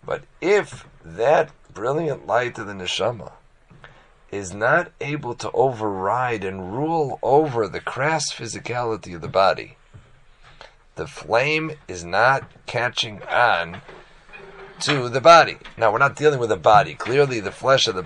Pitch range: 120-160 Hz